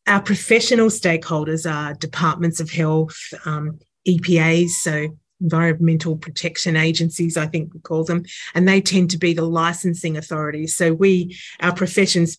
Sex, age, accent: female, 30-49, Australian